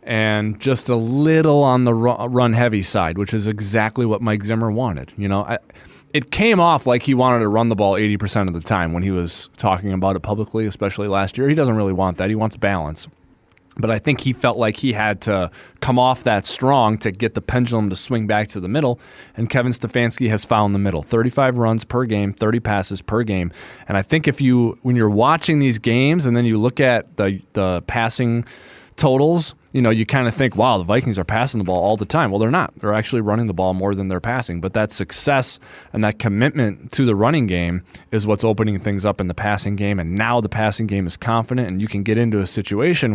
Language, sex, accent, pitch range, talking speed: English, male, American, 100-125 Hz, 235 wpm